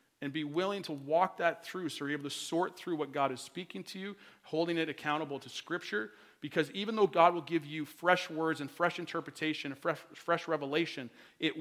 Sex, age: male, 40-59